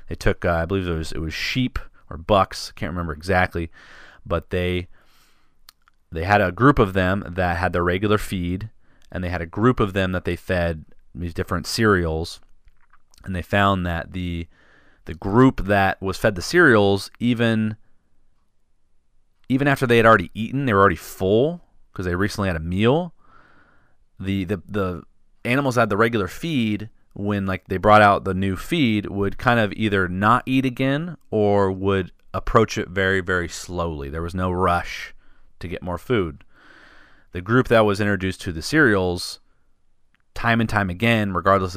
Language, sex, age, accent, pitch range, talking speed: English, male, 30-49, American, 85-110 Hz, 175 wpm